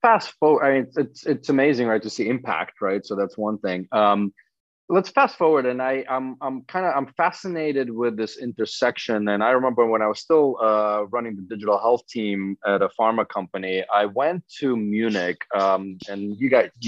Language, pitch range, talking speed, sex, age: English, 105-135 Hz, 200 wpm, male, 30-49